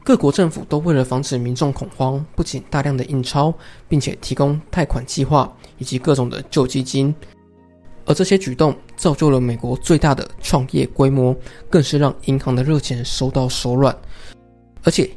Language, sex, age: Chinese, male, 20-39